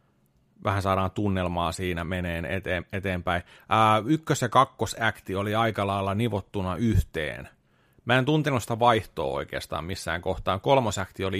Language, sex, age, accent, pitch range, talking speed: Finnish, male, 30-49, native, 90-115 Hz, 135 wpm